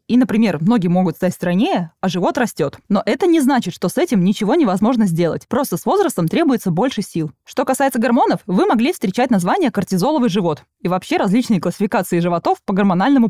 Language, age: Russian, 20-39